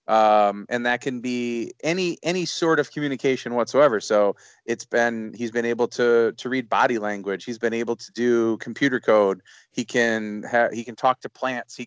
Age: 30-49